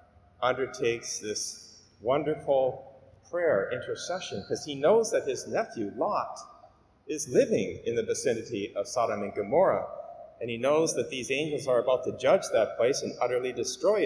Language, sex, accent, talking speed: English, male, American, 155 wpm